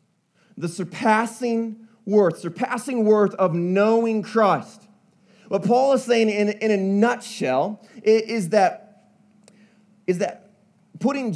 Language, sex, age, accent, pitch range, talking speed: English, male, 30-49, American, 205-240 Hz, 110 wpm